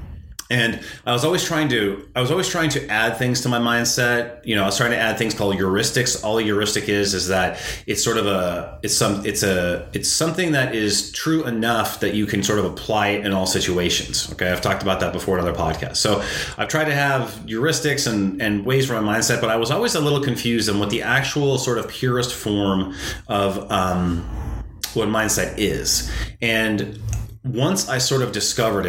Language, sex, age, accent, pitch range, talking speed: English, male, 30-49, American, 95-120 Hz, 215 wpm